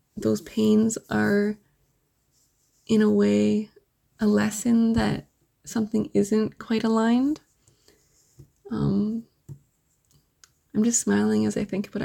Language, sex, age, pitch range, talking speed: English, female, 20-39, 205-225 Hz, 105 wpm